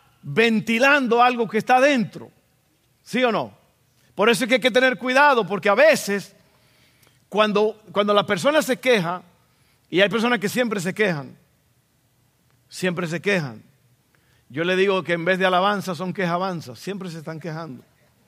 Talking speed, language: 165 wpm, Spanish